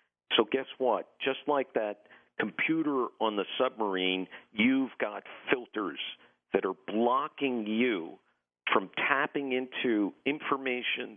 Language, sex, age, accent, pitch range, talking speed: English, male, 50-69, American, 110-140 Hz, 115 wpm